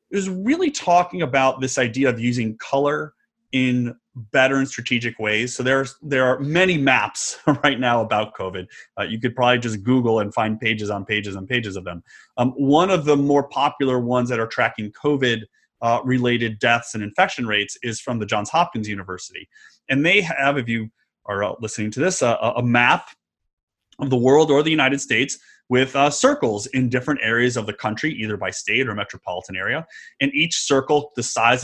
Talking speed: 190 wpm